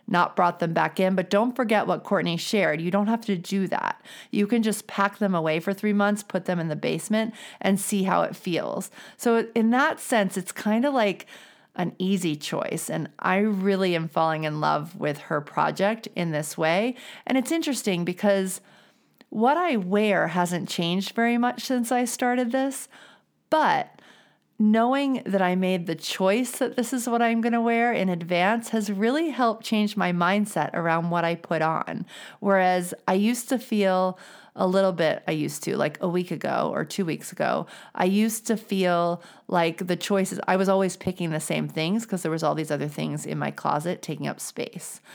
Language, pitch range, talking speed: English, 175-230 Hz, 200 wpm